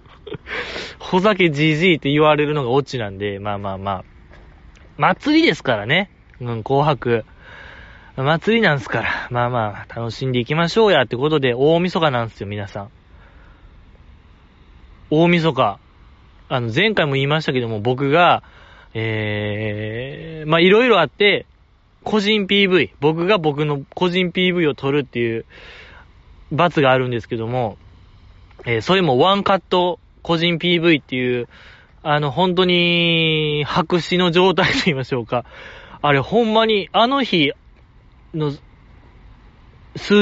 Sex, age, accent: male, 20-39, native